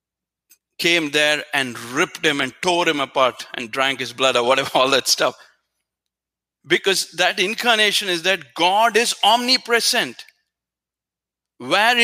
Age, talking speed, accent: 50-69, 135 wpm, Indian